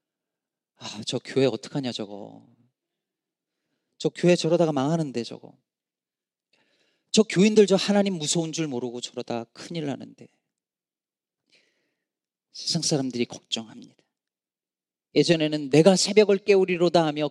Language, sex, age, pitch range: Korean, male, 40-59, 130-205 Hz